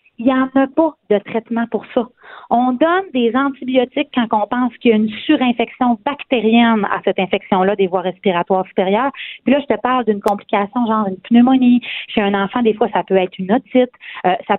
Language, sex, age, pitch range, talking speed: French, female, 40-59, 195-260 Hz, 210 wpm